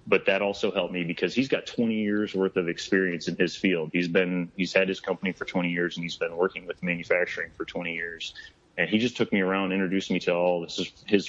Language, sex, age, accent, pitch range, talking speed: English, male, 30-49, American, 90-100 Hz, 240 wpm